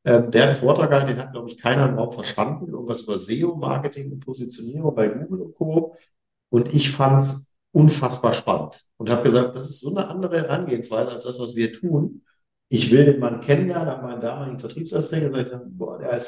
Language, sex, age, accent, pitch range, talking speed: German, male, 50-69, German, 120-155 Hz, 200 wpm